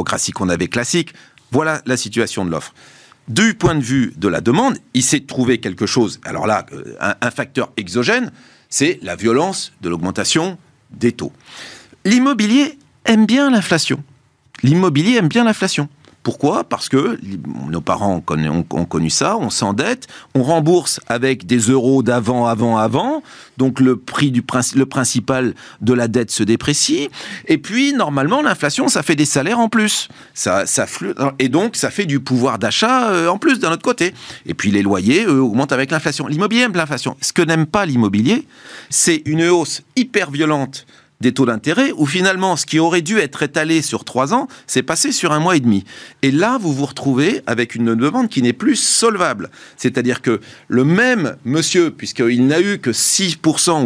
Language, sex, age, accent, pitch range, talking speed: French, male, 40-59, French, 125-180 Hz, 175 wpm